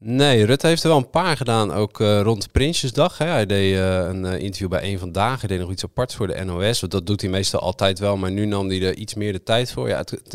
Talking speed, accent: 285 wpm, Dutch